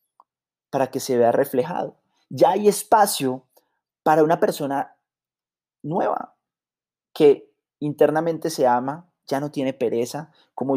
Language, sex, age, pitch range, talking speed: Spanish, male, 30-49, 125-150 Hz, 115 wpm